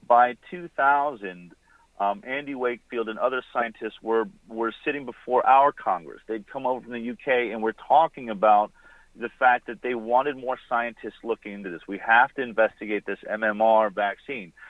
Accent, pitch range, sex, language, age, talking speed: American, 110-155 Hz, male, English, 40-59, 165 wpm